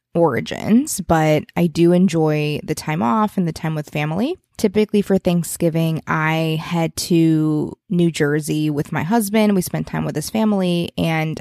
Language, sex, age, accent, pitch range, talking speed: English, female, 20-39, American, 160-195 Hz, 165 wpm